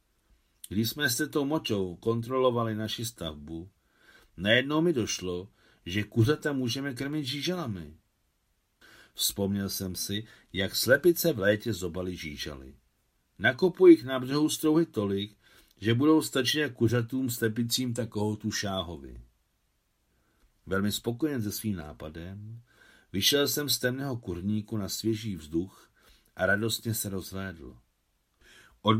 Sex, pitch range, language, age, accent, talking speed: male, 90-125 Hz, Czech, 50-69, native, 115 wpm